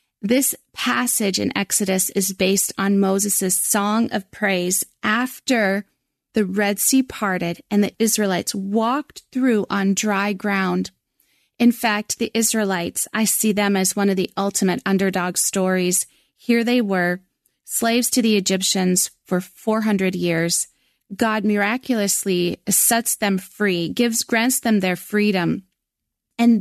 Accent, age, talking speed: American, 30-49, 135 wpm